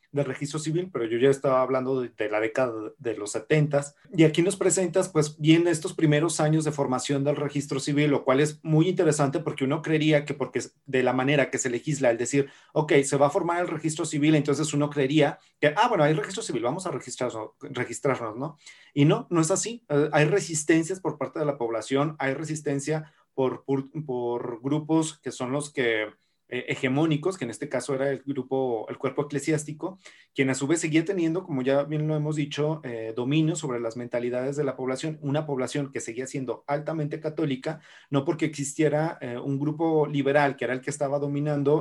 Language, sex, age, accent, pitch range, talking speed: Spanish, male, 30-49, Mexican, 130-155 Hz, 200 wpm